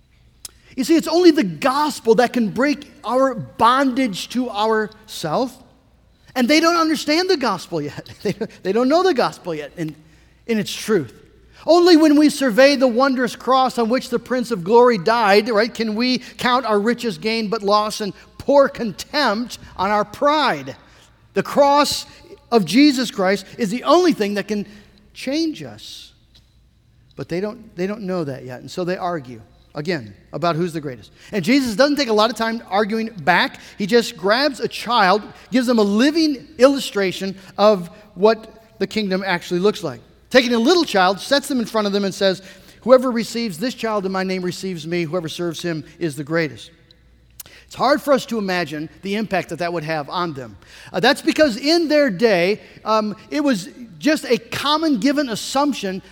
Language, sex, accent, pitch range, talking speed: English, male, American, 185-260 Hz, 180 wpm